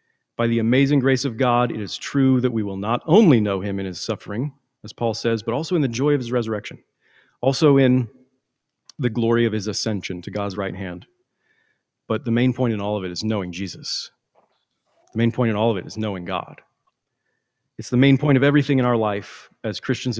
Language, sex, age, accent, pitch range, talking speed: English, male, 40-59, American, 105-125 Hz, 215 wpm